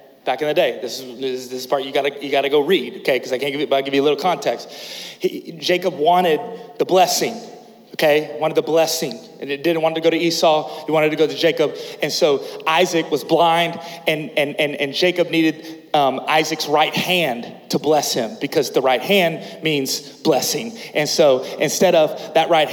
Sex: male